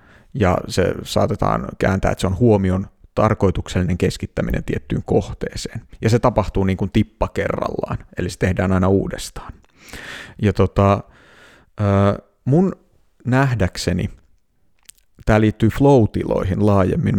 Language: Finnish